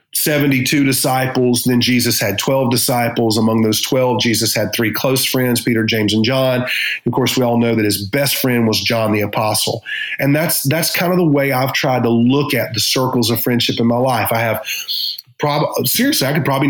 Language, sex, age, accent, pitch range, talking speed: English, male, 40-59, American, 115-140 Hz, 210 wpm